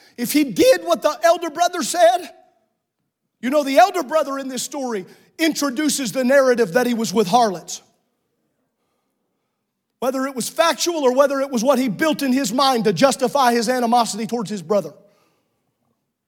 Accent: American